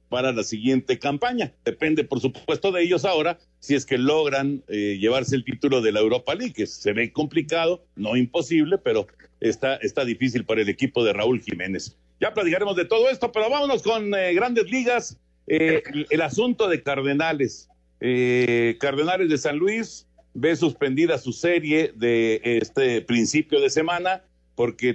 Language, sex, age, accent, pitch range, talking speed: Spanish, male, 50-69, Mexican, 125-165 Hz, 165 wpm